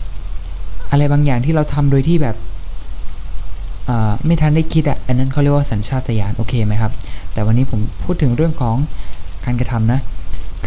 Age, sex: 20-39, male